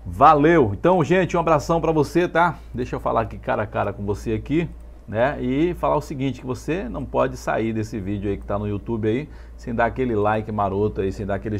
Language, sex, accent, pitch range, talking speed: Portuguese, male, Brazilian, 105-135 Hz, 235 wpm